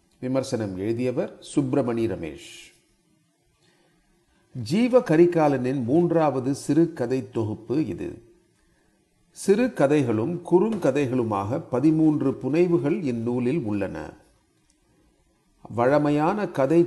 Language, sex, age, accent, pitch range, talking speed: Tamil, male, 40-59, native, 115-165 Hz, 70 wpm